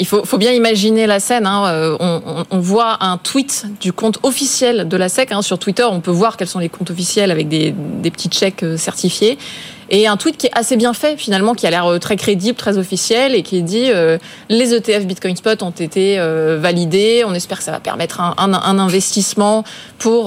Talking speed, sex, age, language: 225 wpm, female, 20-39, French